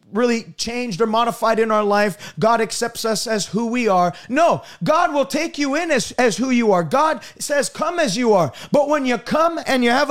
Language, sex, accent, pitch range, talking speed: English, male, American, 225-290 Hz, 225 wpm